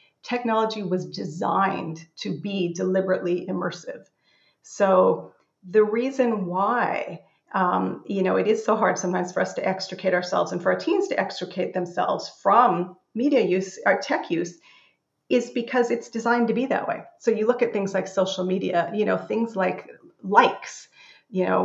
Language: English